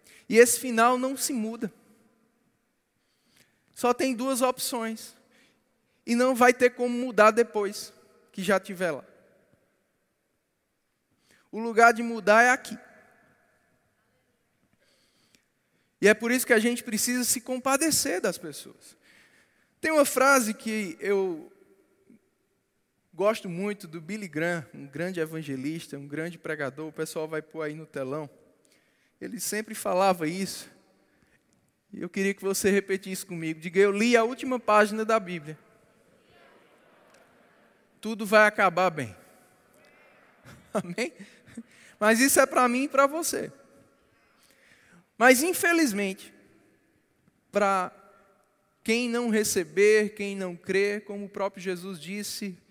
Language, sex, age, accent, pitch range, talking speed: Portuguese, male, 20-39, Brazilian, 190-245 Hz, 125 wpm